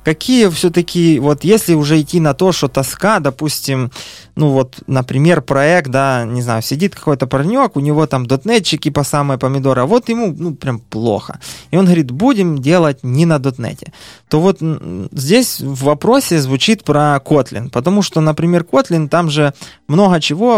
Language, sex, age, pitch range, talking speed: Ukrainian, male, 20-39, 130-165 Hz, 170 wpm